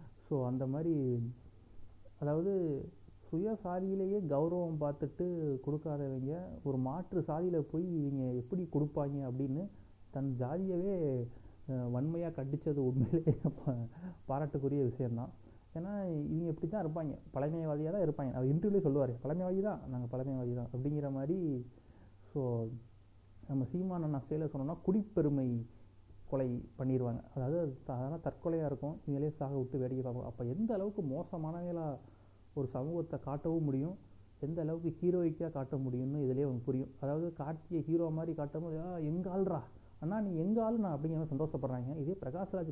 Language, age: Tamil, 30-49